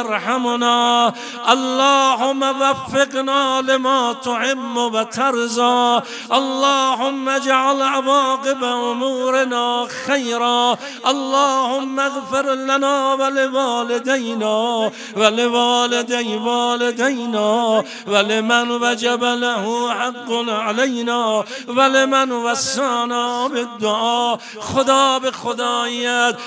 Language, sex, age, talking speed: Persian, male, 50-69, 75 wpm